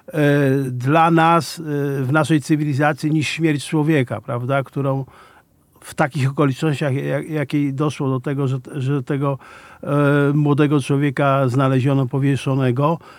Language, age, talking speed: Polish, 50-69, 125 wpm